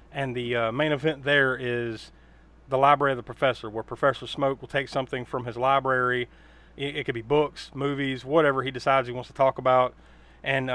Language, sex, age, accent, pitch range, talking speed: English, male, 30-49, American, 125-160 Hz, 200 wpm